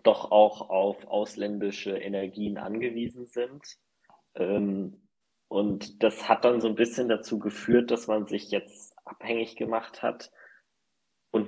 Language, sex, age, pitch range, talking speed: German, male, 20-39, 95-105 Hz, 125 wpm